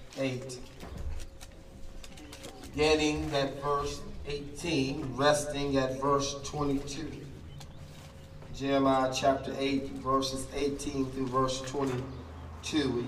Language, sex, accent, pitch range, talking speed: English, male, American, 100-140 Hz, 80 wpm